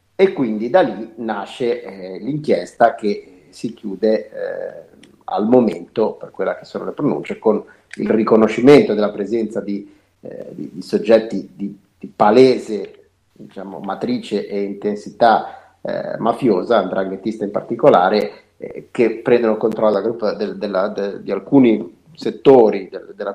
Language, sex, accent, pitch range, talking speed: Italian, male, native, 105-170 Hz, 130 wpm